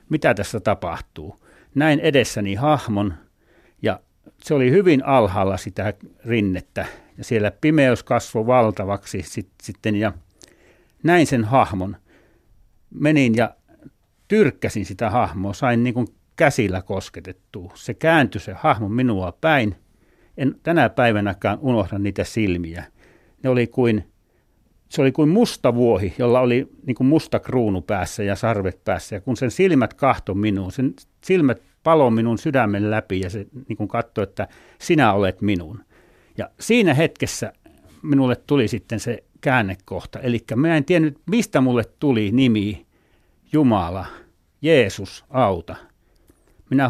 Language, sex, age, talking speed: Finnish, male, 60-79, 130 wpm